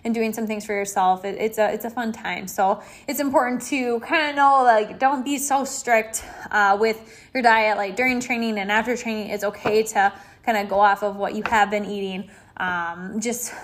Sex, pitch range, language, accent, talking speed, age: female, 205-245 Hz, English, American, 220 wpm, 10-29